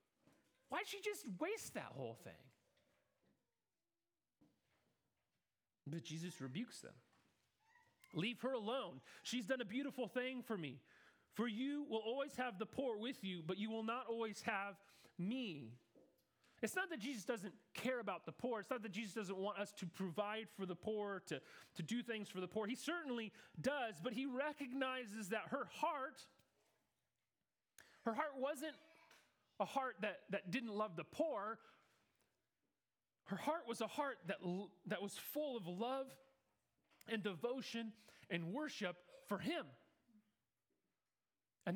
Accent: American